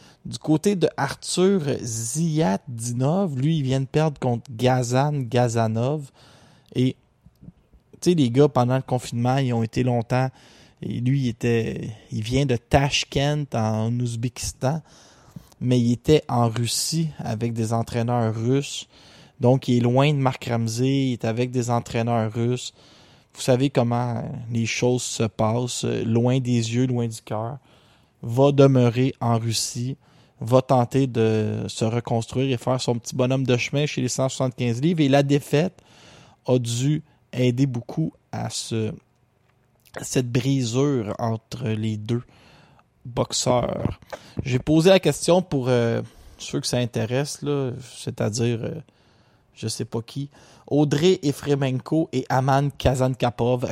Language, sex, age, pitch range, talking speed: French, male, 20-39, 120-140 Hz, 145 wpm